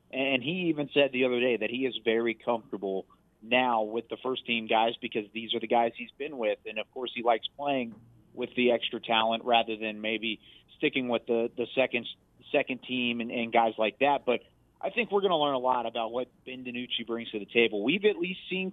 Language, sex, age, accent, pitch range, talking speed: English, male, 30-49, American, 120-145 Hz, 230 wpm